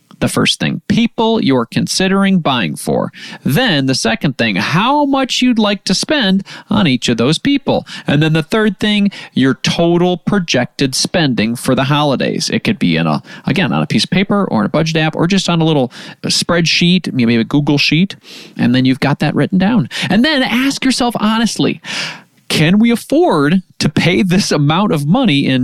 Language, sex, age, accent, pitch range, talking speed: English, male, 30-49, American, 150-210 Hz, 195 wpm